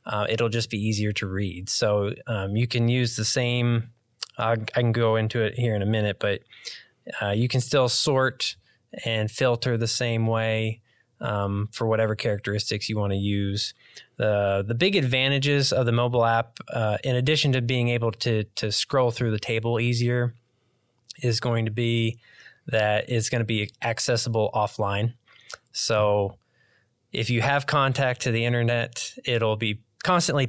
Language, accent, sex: English, American, male